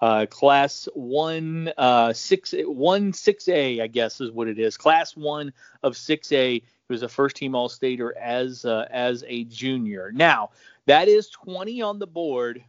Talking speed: 155 wpm